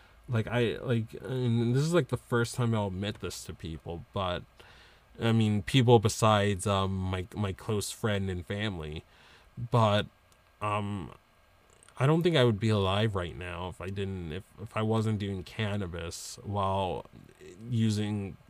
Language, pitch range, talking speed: English, 95-115 Hz, 160 wpm